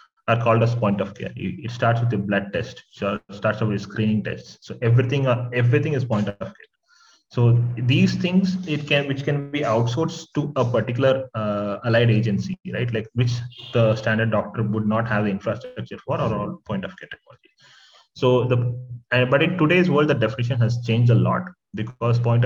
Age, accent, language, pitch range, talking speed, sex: 30-49, native, Hindi, 110-130 Hz, 185 wpm, male